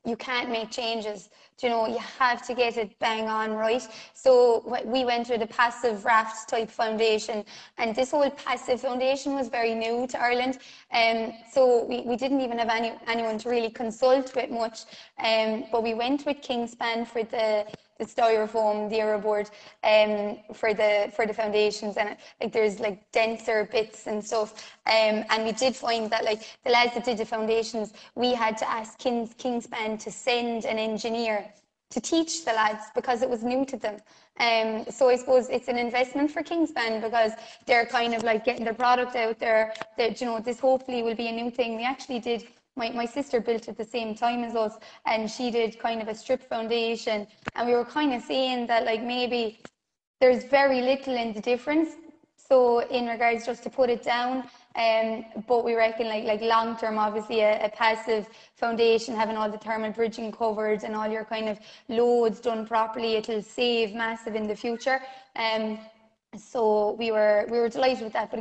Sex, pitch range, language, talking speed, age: female, 220-245 Hz, English, 195 wpm, 20-39